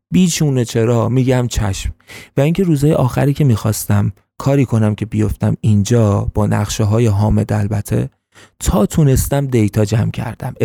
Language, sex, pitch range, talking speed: Persian, male, 105-135 Hz, 140 wpm